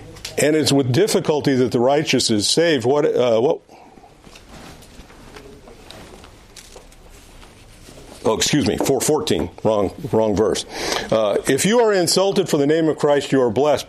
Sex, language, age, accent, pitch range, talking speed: male, English, 50-69, American, 115-150 Hz, 140 wpm